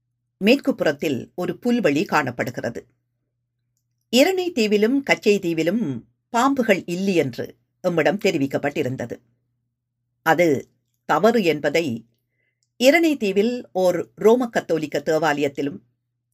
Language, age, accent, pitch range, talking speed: Tamil, 50-69, native, 120-205 Hz, 80 wpm